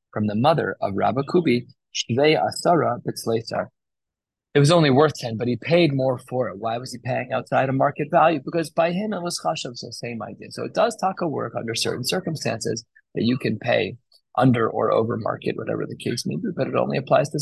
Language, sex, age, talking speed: English, male, 20-39, 220 wpm